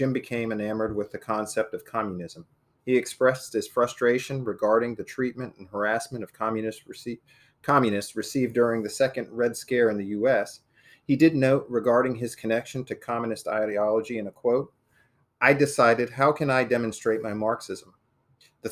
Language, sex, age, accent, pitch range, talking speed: English, male, 40-59, American, 110-130 Hz, 160 wpm